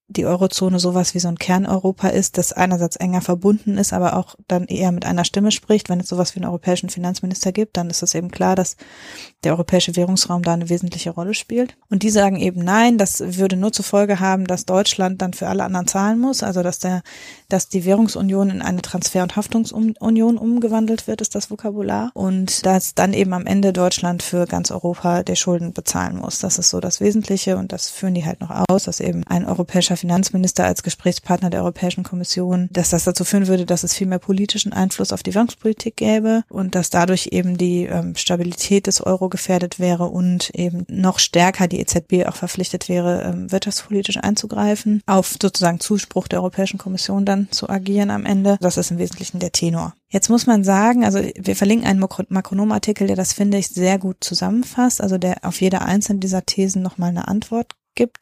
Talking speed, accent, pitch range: 200 wpm, German, 180-200 Hz